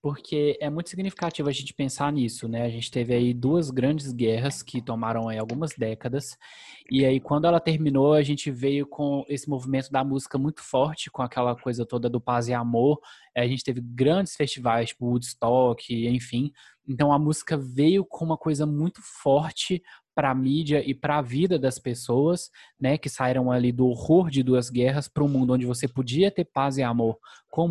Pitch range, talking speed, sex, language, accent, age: 125-150 Hz, 195 wpm, male, Portuguese, Brazilian, 20-39